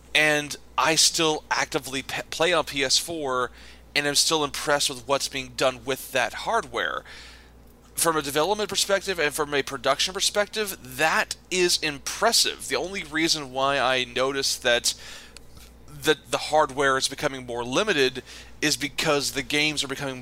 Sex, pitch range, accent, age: male, 120-145 Hz, American, 30-49